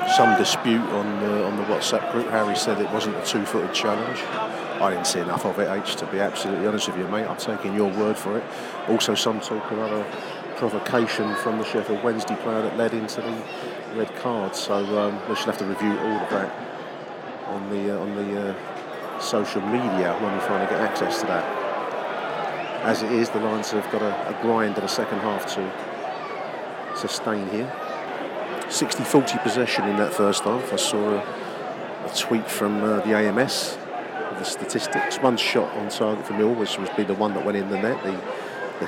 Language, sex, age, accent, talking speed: English, male, 40-59, British, 205 wpm